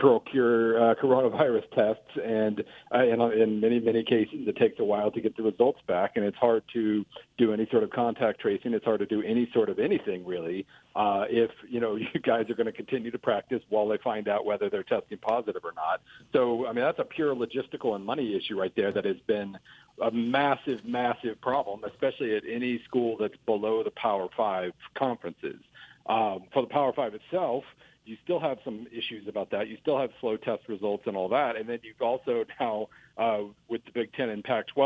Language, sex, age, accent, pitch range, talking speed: English, male, 50-69, American, 105-120 Hz, 215 wpm